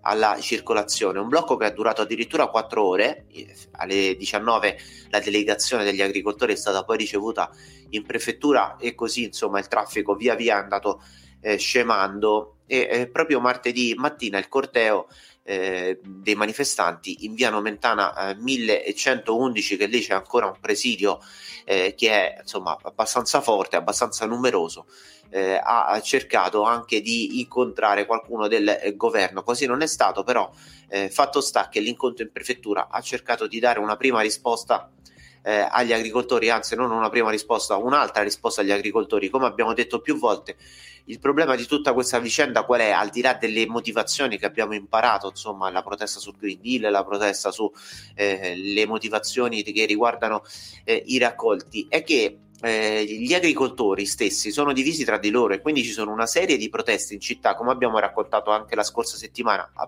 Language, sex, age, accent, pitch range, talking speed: Italian, male, 30-49, native, 105-125 Hz, 170 wpm